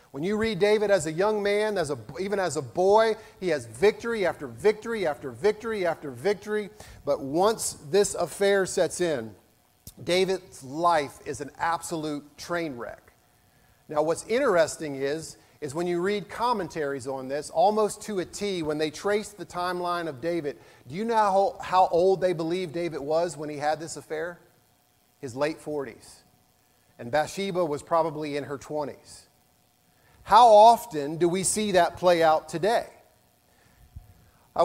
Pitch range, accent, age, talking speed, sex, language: 150-190 Hz, American, 40-59, 160 wpm, male, English